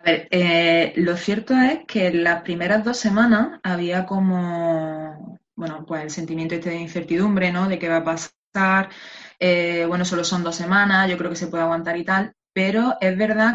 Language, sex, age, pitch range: Spanish, female, 20-39, 170-195 Hz